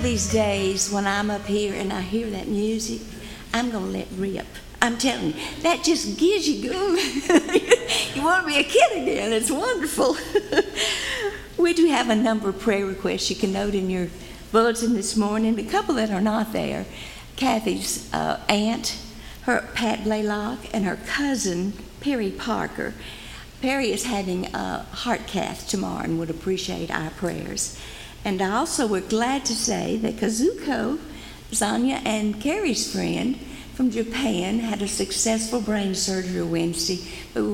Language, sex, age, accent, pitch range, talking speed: English, female, 60-79, American, 185-245 Hz, 160 wpm